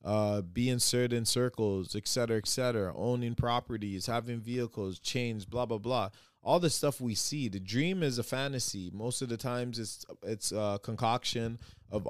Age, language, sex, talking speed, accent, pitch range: 20-39, English, male, 170 wpm, American, 110-130 Hz